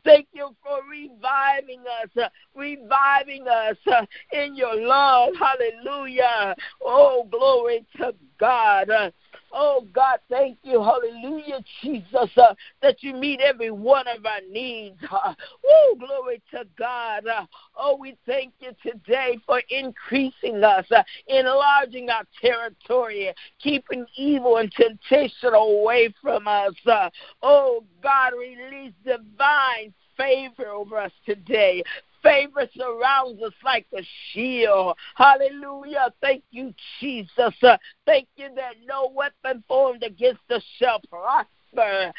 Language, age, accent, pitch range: Japanese, 50-69, American, 235-280 Hz